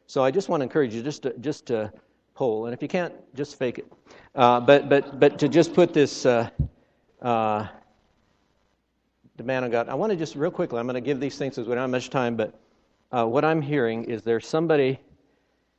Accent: American